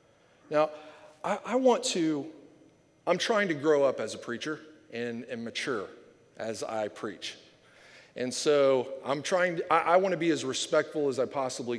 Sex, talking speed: male, 170 wpm